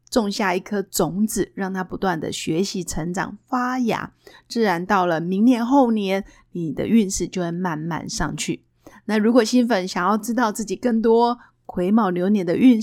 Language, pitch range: Chinese, 185-235 Hz